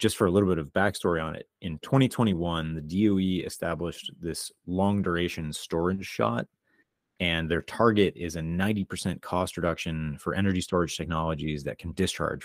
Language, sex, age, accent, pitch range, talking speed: English, male, 30-49, American, 80-100 Hz, 170 wpm